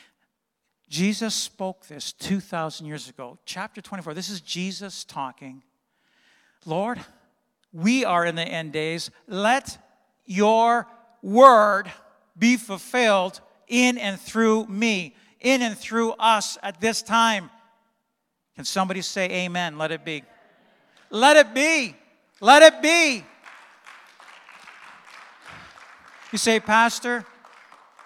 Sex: male